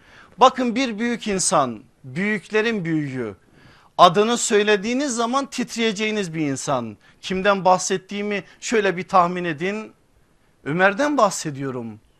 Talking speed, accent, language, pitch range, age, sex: 100 wpm, native, Turkish, 160-225 Hz, 50-69, male